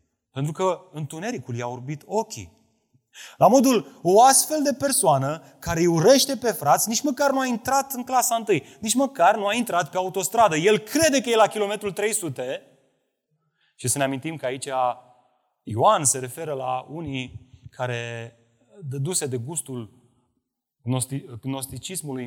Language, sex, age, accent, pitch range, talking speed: Romanian, male, 30-49, native, 135-220 Hz, 145 wpm